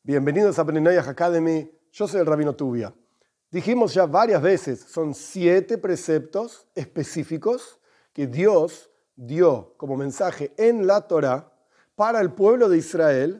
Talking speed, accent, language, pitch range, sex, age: 135 wpm, Argentinian, Spanish, 155-230 Hz, male, 40-59